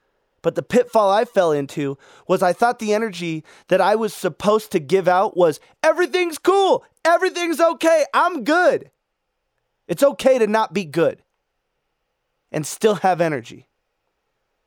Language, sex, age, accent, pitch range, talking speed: English, male, 20-39, American, 170-250 Hz, 145 wpm